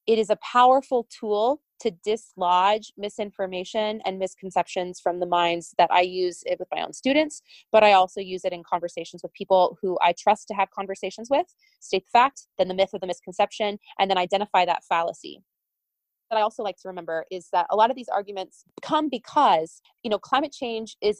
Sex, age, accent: female, 20-39, American